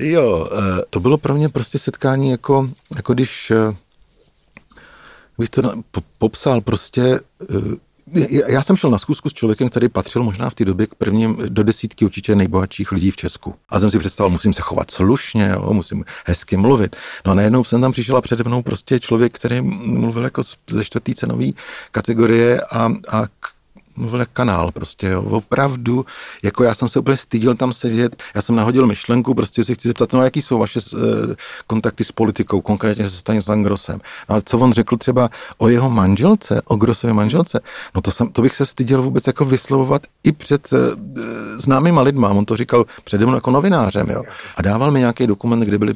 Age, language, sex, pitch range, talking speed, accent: 40-59, Czech, male, 105-130 Hz, 180 wpm, native